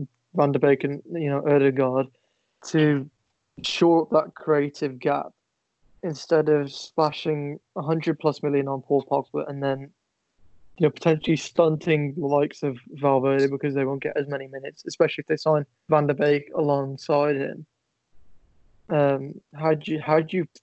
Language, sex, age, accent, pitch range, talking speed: English, male, 20-39, British, 140-155 Hz, 160 wpm